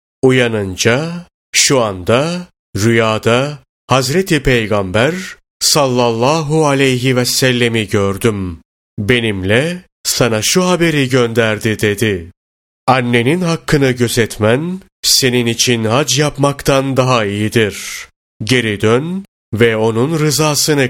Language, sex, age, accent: Turkish, male, 30-49, native